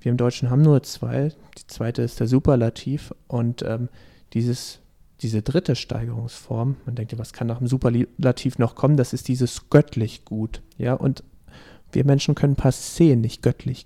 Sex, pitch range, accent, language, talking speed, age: male, 130-155 Hz, German, German, 175 wpm, 40-59